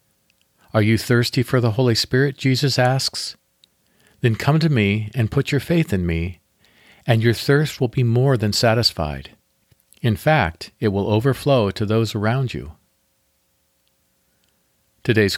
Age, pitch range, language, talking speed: 50-69, 95-130 Hz, English, 145 wpm